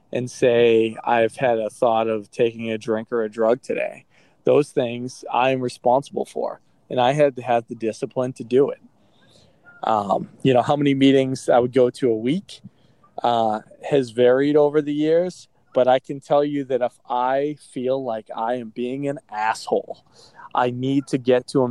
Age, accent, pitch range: 20-39, American, 120-140 Hz